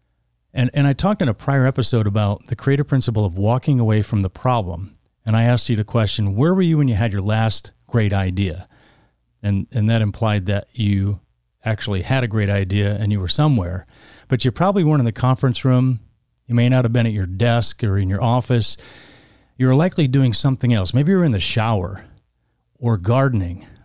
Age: 40-59